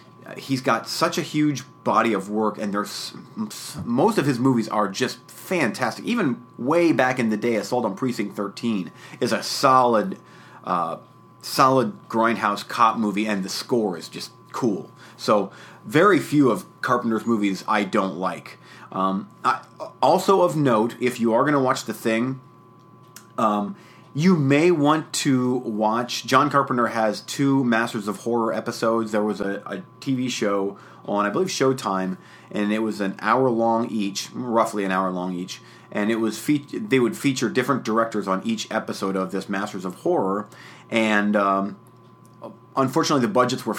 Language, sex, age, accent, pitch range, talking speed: English, male, 30-49, American, 105-130 Hz, 165 wpm